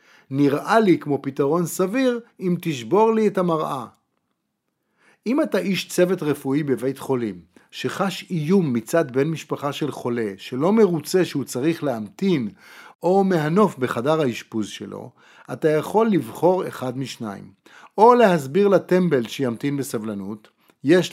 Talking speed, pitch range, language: 130 wpm, 130-180 Hz, Hebrew